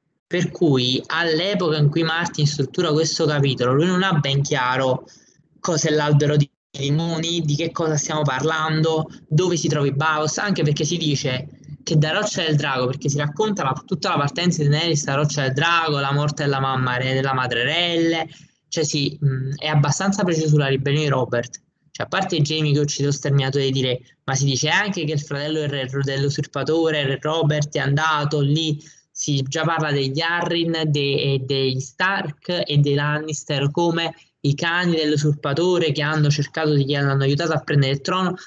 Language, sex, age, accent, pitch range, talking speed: Italian, male, 20-39, native, 140-165 Hz, 185 wpm